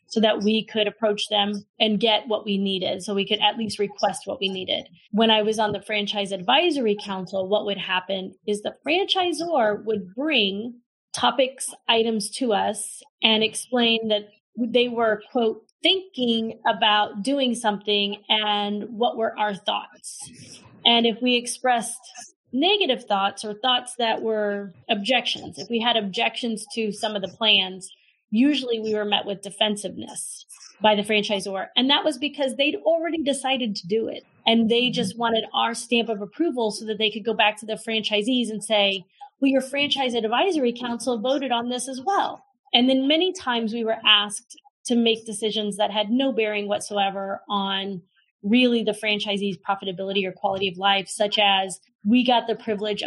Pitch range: 205-245 Hz